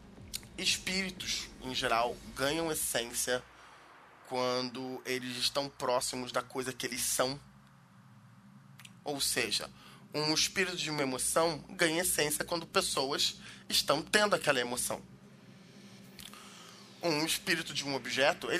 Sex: male